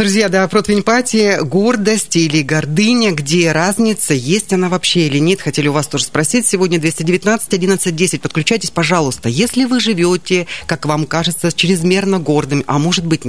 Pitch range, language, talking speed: 145-195 Hz, Russian, 150 wpm